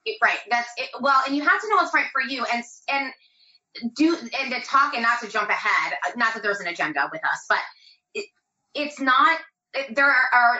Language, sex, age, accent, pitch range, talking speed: English, female, 30-49, American, 185-240 Hz, 225 wpm